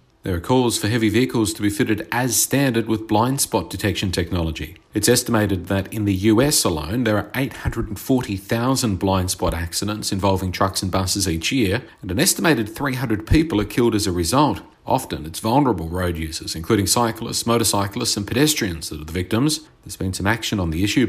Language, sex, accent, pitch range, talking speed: English, male, Australian, 95-115 Hz, 190 wpm